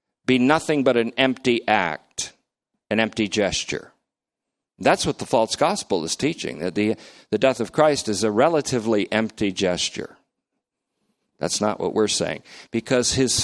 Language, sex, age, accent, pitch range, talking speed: English, male, 50-69, American, 100-130 Hz, 150 wpm